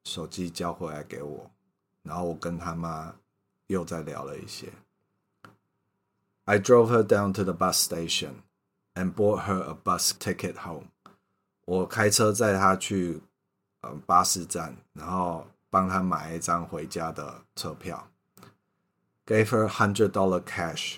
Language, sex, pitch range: Chinese, male, 85-100 Hz